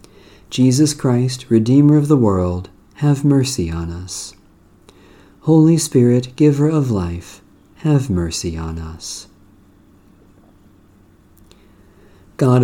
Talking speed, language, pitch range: 95 wpm, English, 95-130 Hz